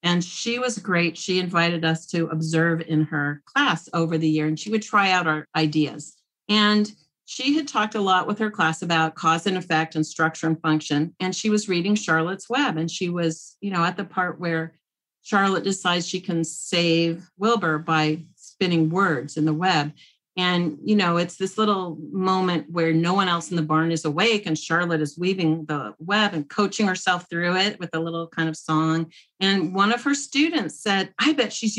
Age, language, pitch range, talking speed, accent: 40-59, English, 160-210 Hz, 205 wpm, American